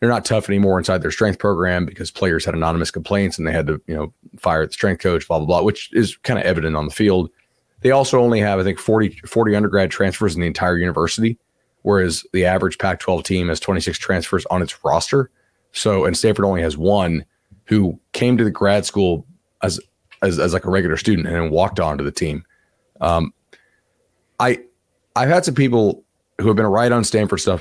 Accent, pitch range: American, 90-115 Hz